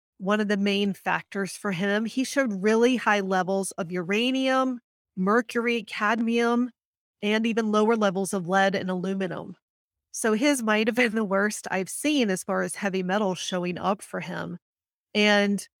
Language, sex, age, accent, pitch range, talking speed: English, female, 30-49, American, 190-235 Hz, 160 wpm